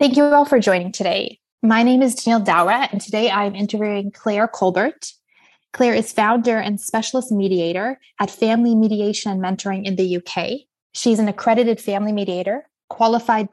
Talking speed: 165 wpm